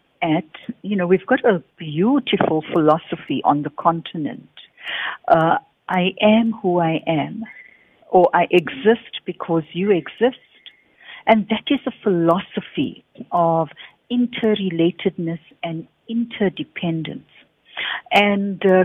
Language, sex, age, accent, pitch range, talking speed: English, female, 60-79, Indian, 165-215 Hz, 105 wpm